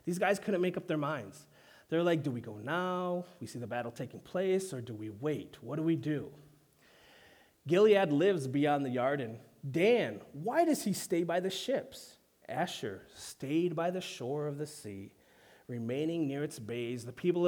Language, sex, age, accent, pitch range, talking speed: English, male, 30-49, American, 120-175 Hz, 190 wpm